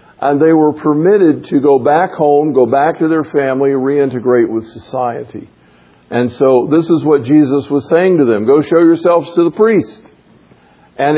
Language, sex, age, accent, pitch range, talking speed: English, male, 50-69, American, 135-165 Hz, 175 wpm